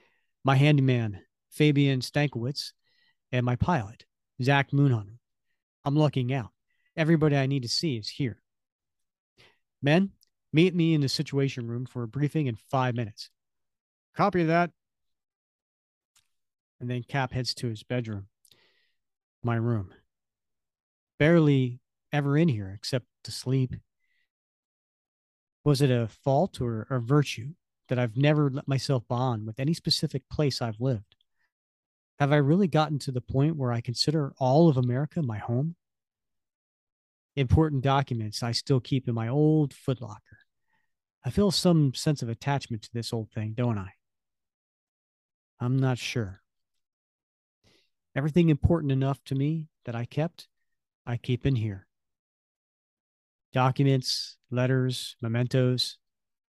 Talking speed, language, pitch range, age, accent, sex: 130 wpm, English, 120-145 Hz, 40-59, American, male